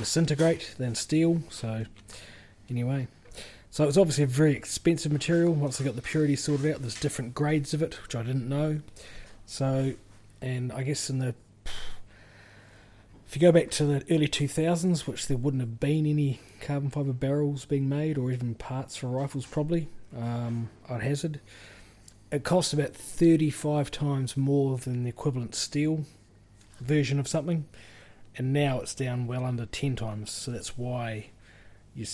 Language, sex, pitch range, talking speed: English, male, 105-140 Hz, 160 wpm